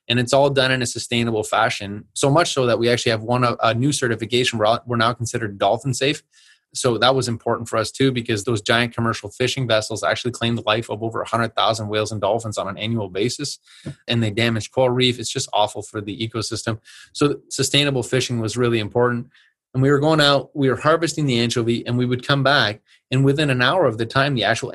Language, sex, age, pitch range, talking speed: English, male, 20-39, 115-135 Hz, 230 wpm